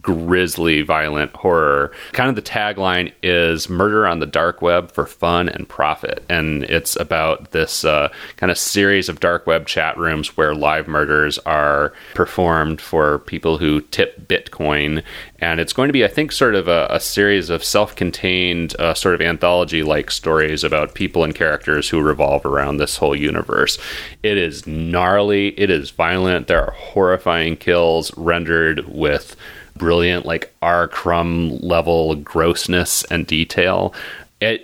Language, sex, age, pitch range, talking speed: English, male, 30-49, 75-90 Hz, 160 wpm